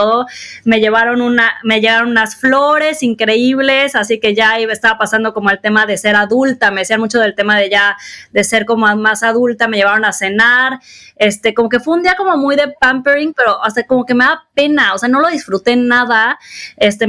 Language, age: Spanish, 20-39